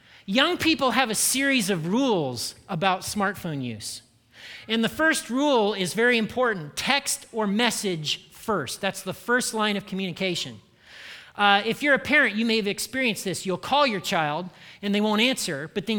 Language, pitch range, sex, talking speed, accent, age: English, 185-235 Hz, male, 175 wpm, American, 40-59